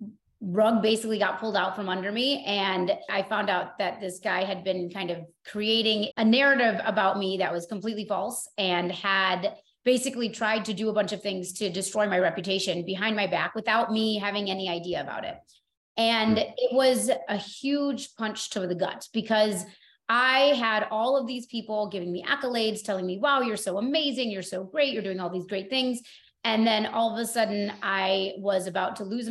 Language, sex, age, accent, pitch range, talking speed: English, female, 30-49, American, 195-230 Hz, 200 wpm